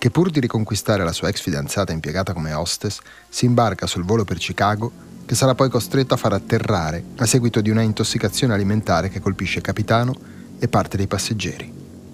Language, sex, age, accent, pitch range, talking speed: Italian, male, 30-49, native, 95-125 Hz, 190 wpm